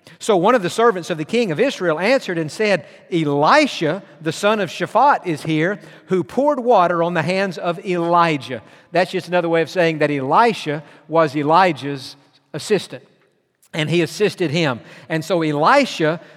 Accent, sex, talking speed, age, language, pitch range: American, male, 170 wpm, 50-69, English, 165-220 Hz